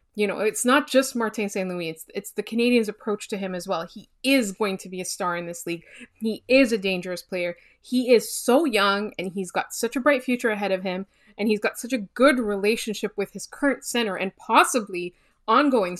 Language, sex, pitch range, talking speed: English, female, 195-255 Hz, 220 wpm